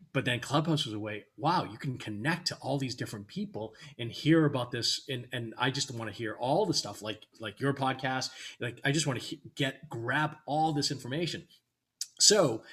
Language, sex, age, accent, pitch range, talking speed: English, male, 30-49, American, 115-150 Hz, 200 wpm